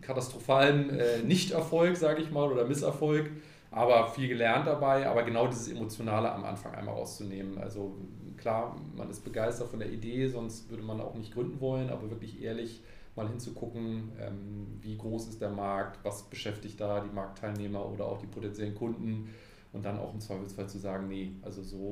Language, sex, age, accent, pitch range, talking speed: German, male, 30-49, German, 105-130 Hz, 180 wpm